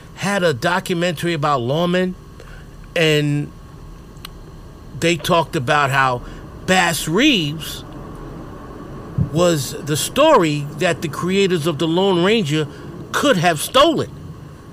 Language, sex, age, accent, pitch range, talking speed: English, male, 50-69, American, 145-195 Hz, 100 wpm